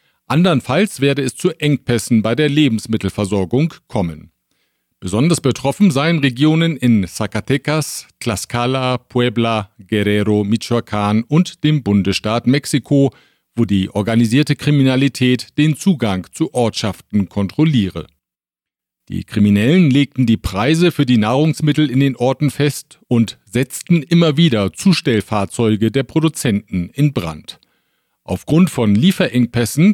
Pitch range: 110-150 Hz